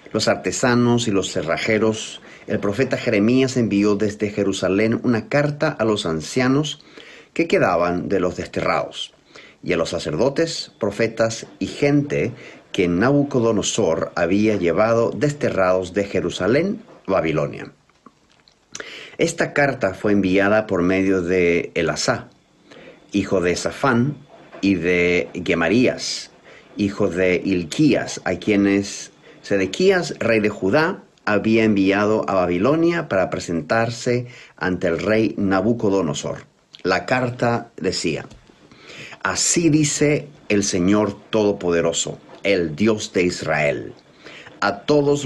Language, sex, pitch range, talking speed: English, male, 95-125 Hz, 110 wpm